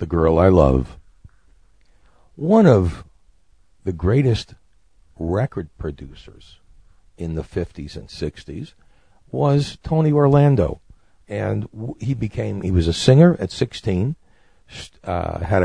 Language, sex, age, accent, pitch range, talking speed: English, male, 50-69, American, 90-115 Hz, 110 wpm